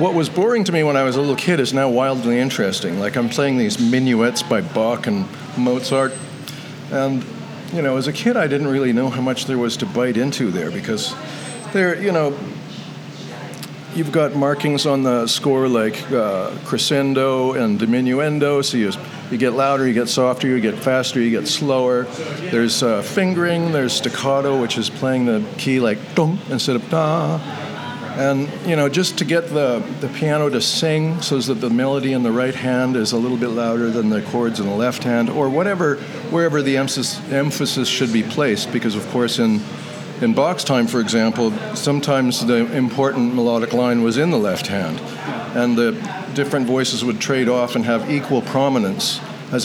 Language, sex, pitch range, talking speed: English, male, 120-145 Hz, 190 wpm